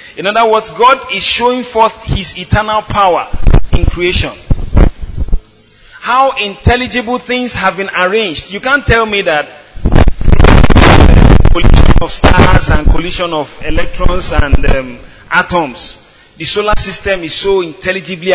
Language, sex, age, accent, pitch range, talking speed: English, male, 30-49, Nigerian, 155-225 Hz, 130 wpm